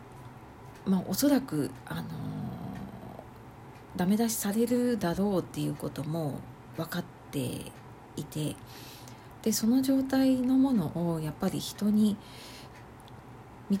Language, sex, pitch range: Japanese, female, 125-185 Hz